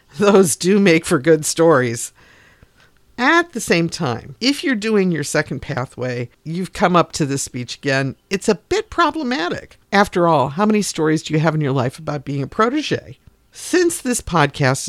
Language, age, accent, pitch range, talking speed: English, 50-69, American, 140-215 Hz, 180 wpm